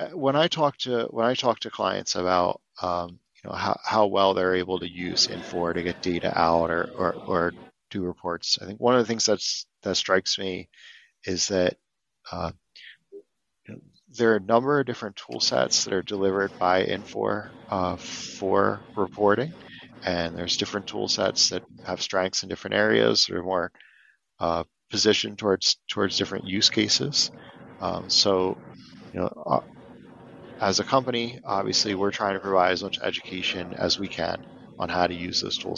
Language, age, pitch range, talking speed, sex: English, 40-59, 90-110 Hz, 175 wpm, male